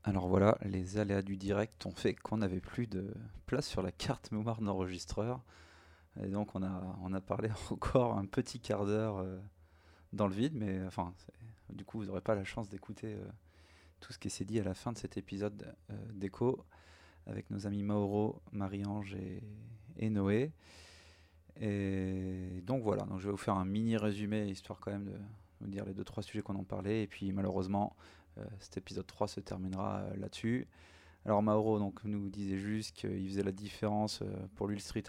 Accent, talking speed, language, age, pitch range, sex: French, 190 wpm, French, 20-39, 95-105 Hz, male